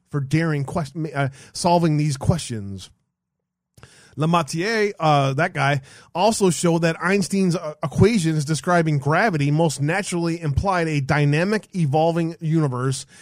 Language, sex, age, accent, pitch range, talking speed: English, male, 30-49, American, 145-180 Hz, 125 wpm